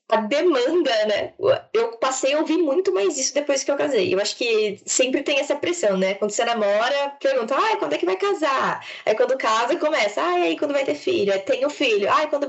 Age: 10-29